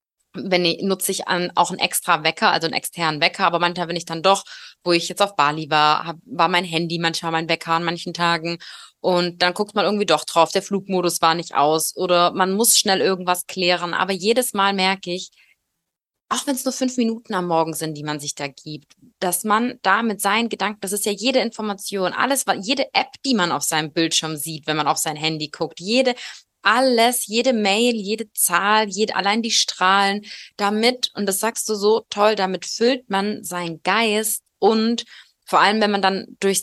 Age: 20-39